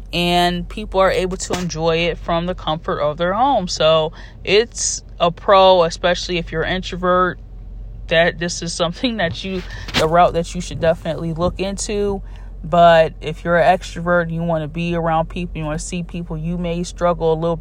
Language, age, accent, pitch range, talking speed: English, 10-29, American, 155-175 Hz, 195 wpm